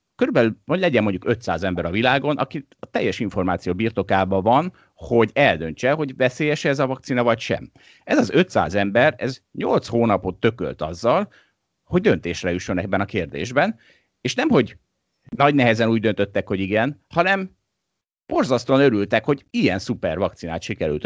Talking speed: 155 wpm